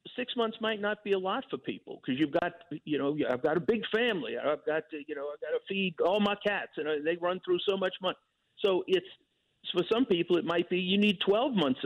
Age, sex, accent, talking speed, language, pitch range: 50-69, male, American, 255 wpm, English, 155-230 Hz